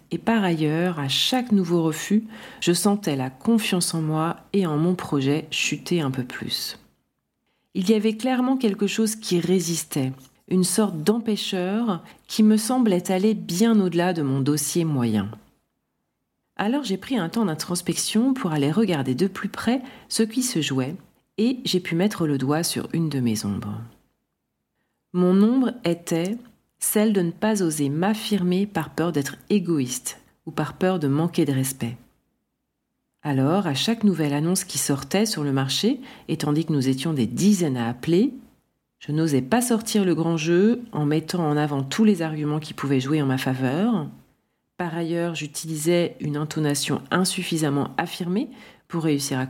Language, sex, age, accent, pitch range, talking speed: French, female, 40-59, French, 150-210 Hz, 165 wpm